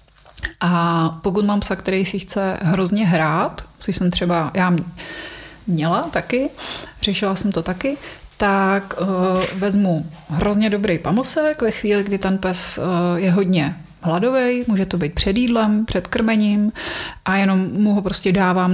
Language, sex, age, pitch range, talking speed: Czech, female, 30-49, 180-210 Hz, 145 wpm